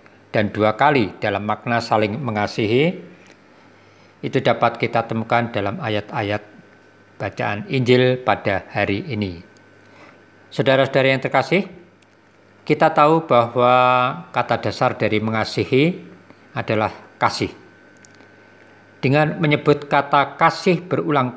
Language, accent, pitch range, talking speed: Indonesian, native, 105-140 Hz, 100 wpm